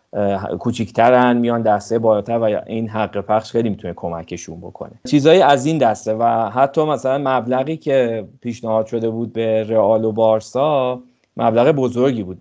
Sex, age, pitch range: male, 30-49, 100-115 Hz